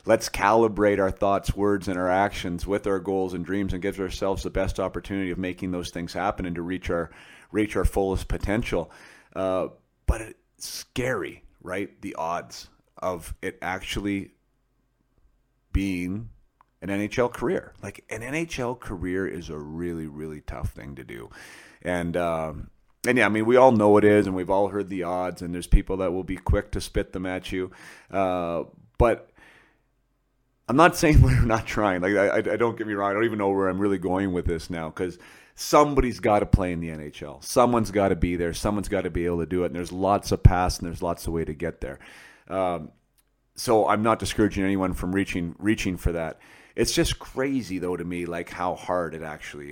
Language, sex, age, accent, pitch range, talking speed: English, male, 30-49, American, 85-105 Hz, 205 wpm